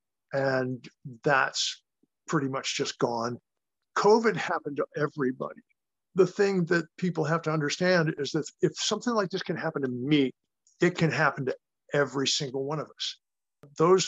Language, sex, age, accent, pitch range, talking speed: English, male, 50-69, American, 135-160 Hz, 160 wpm